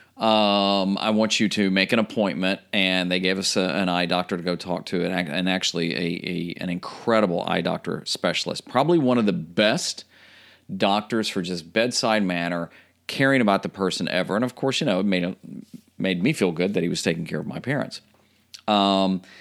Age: 40-59